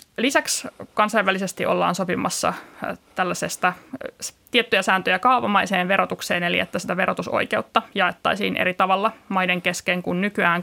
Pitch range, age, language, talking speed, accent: 190-225 Hz, 20-39, Finnish, 115 wpm, native